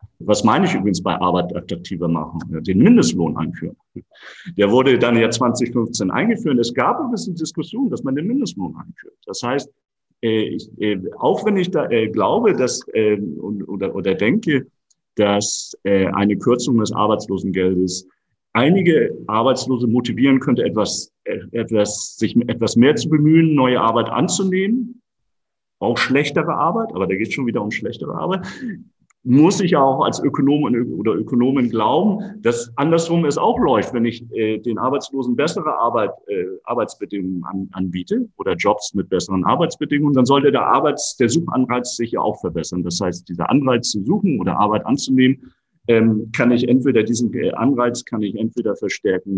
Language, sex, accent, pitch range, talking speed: German, male, German, 105-150 Hz, 170 wpm